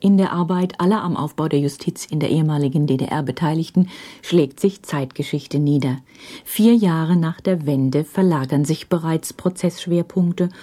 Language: German